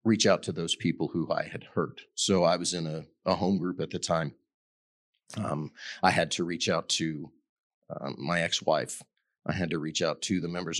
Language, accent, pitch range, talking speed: English, American, 80-110 Hz, 210 wpm